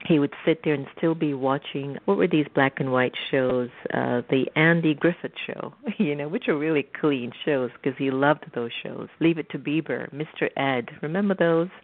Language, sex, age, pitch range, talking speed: English, female, 50-69, 130-165 Hz, 205 wpm